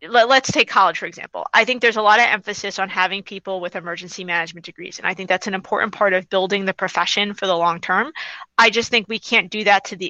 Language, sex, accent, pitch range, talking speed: English, female, American, 180-210 Hz, 250 wpm